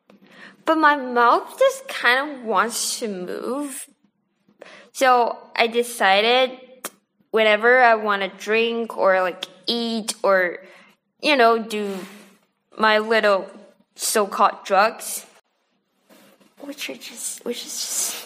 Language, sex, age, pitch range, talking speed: English, female, 20-39, 195-255 Hz, 115 wpm